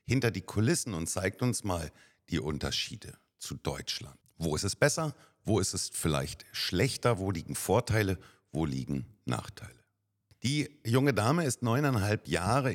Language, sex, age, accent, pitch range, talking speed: German, male, 50-69, German, 80-105 Hz, 150 wpm